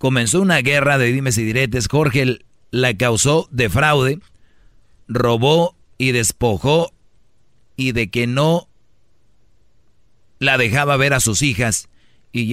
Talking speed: 125 wpm